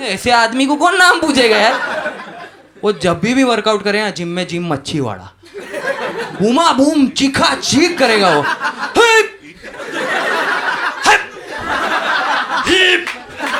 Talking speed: 115 wpm